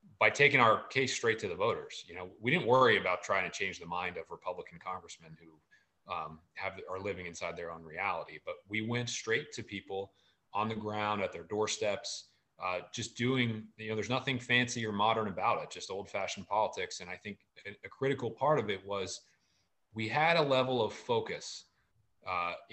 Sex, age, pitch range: male, 30-49, 95-130 Hz